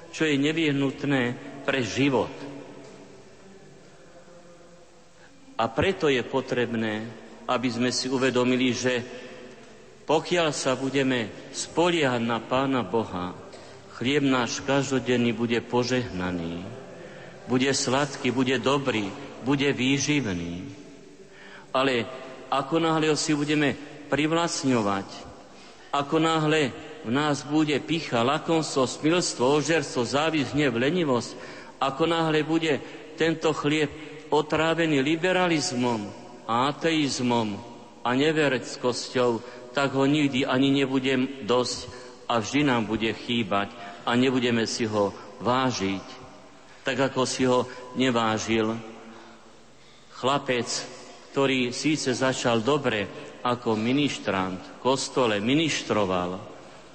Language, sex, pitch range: Slovak, male, 120-150 Hz